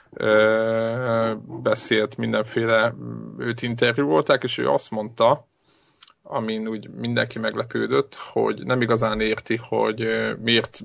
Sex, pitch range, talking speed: male, 110-125 Hz, 105 wpm